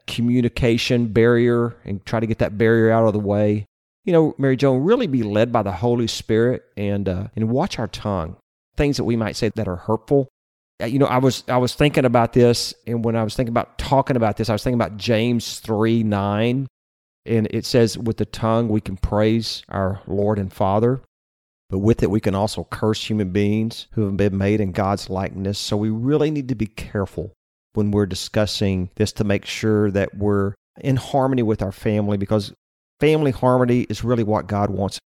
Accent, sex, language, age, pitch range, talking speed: American, male, English, 40-59, 100-120 Hz, 205 wpm